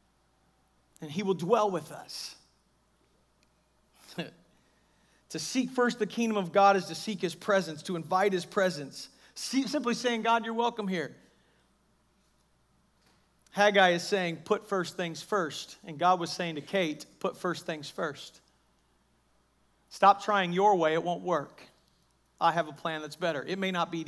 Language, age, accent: English, 40-59, American